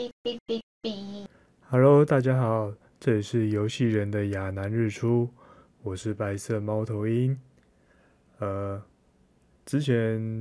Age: 20-39